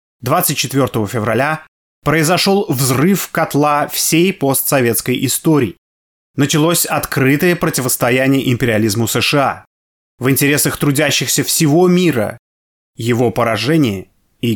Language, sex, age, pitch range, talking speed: Russian, male, 20-39, 115-155 Hz, 85 wpm